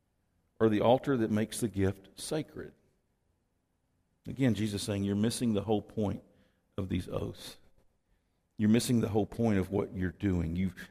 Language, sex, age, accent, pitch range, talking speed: English, male, 50-69, American, 95-150 Hz, 165 wpm